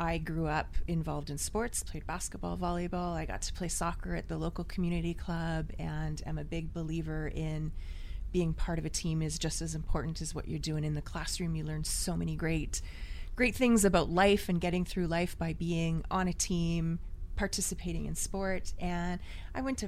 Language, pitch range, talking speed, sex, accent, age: English, 155-190 Hz, 195 wpm, female, American, 30-49